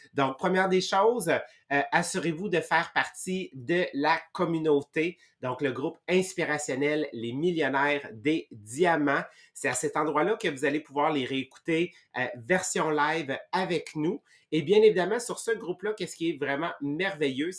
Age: 30-49